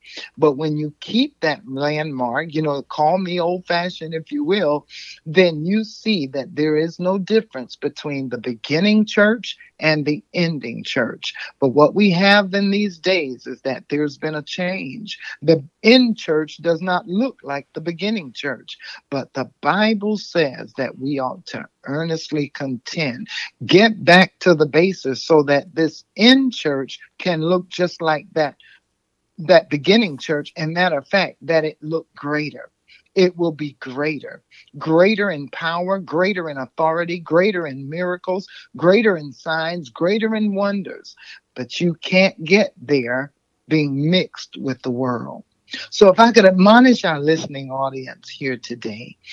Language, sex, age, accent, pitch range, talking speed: English, male, 60-79, American, 145-190 Hz, 155 wpm